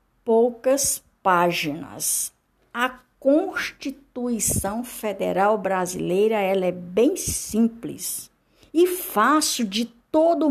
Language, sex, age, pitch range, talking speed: Portuguese, female, 60-79, 185-270 Hz, 80 wpm